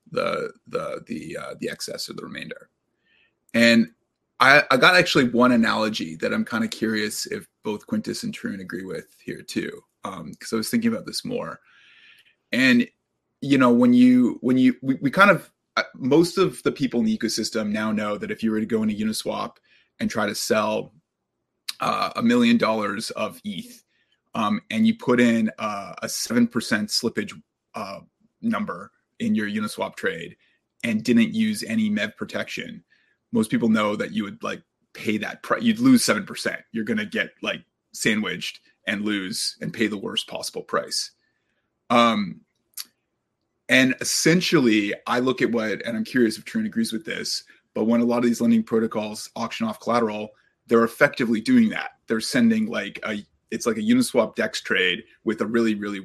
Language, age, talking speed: English, 20-39, 180 wpm